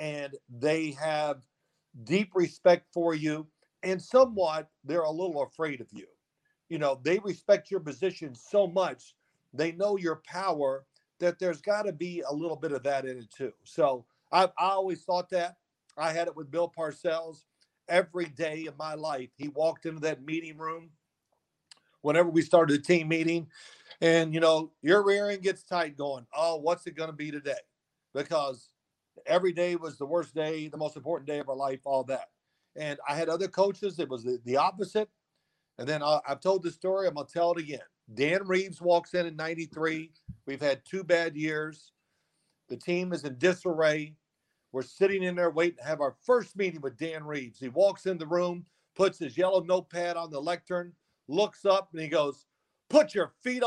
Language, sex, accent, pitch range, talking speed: English, male, American, 150-180 Hz, 190 wpm